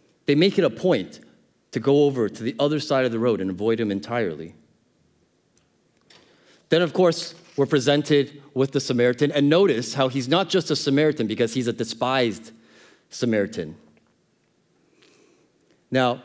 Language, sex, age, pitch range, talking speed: English, male, 30-49, 115-145 Hz, 150 wpm